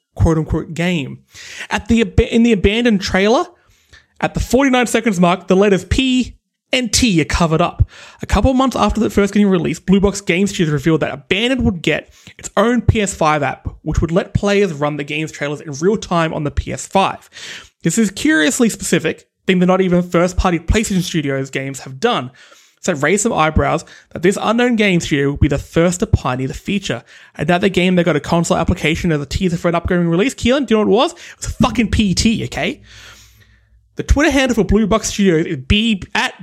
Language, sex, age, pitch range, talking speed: English, male, 20-39, 170-225 Hz, 205 wpm